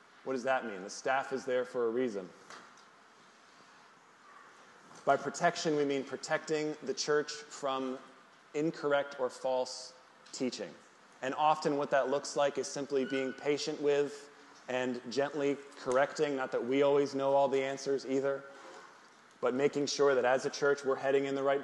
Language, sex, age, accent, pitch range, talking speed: English, male, 20-39, American, 130-140 Hz, 160 wpm